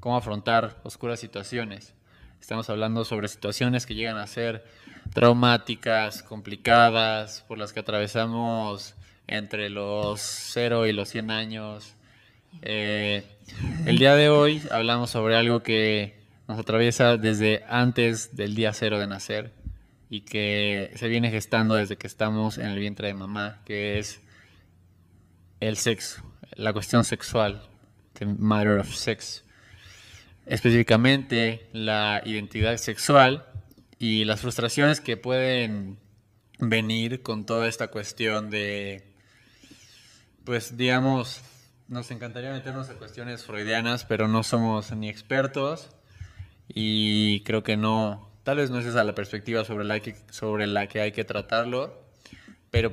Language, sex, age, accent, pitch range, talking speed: Spanish, male, 20-39, Mexican, 105-120 Hz, 130 wpm